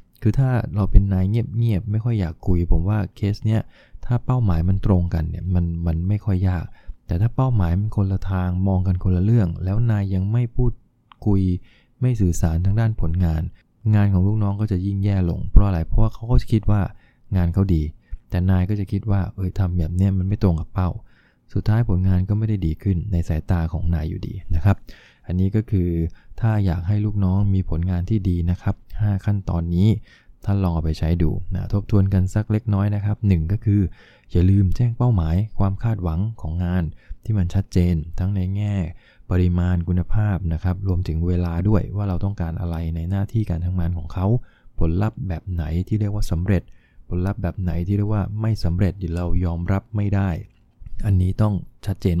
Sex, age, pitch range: male, 20-39, 90-105 Hz